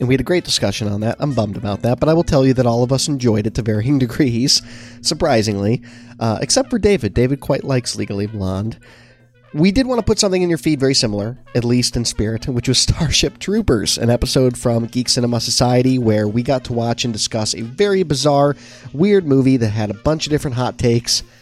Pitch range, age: 110-135 Hz, 30-49